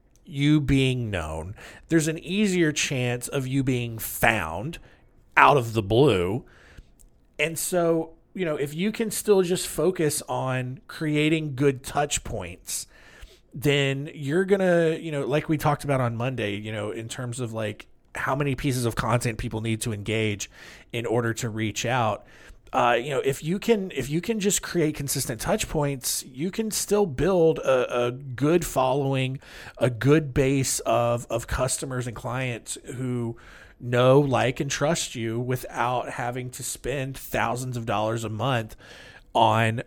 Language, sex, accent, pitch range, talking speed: English, male, American, 120-155 Hz, 165 wpm